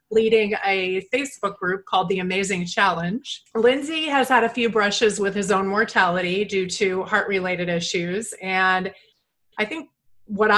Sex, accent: female, American